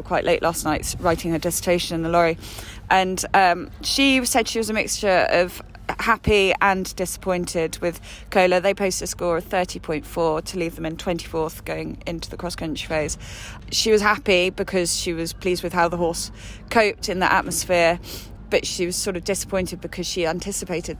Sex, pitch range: female, 160-190 Hz